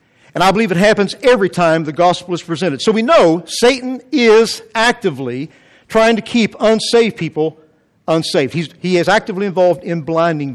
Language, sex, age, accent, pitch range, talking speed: English, male, 50-69, American, 170-240 Hz, 165 wpm